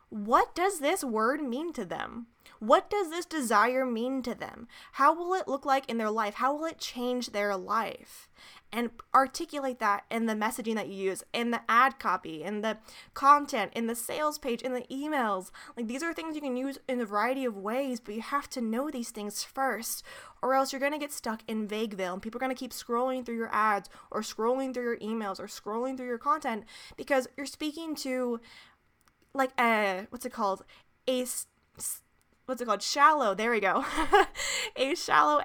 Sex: female